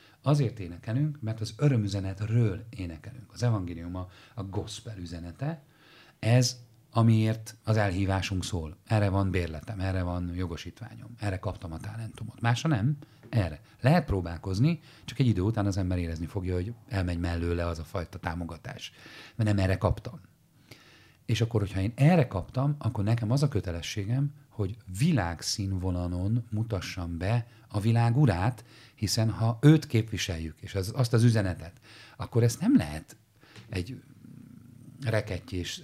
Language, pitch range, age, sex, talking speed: Hungarian, 95-120 Hz, 40-59, male, 140 wpm